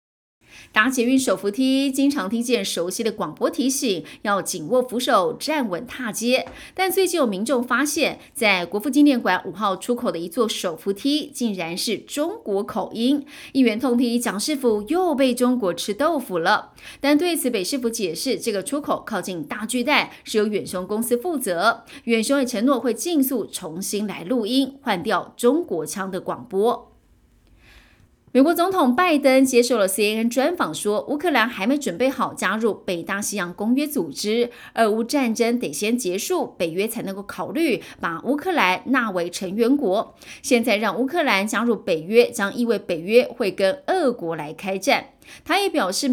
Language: Chinese